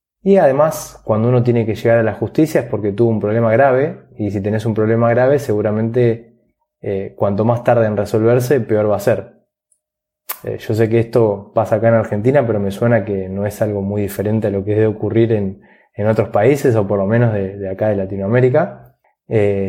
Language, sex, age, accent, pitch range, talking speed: Spanish, male, 20-39, Argentinian, 105-125 Hz, 215 wpm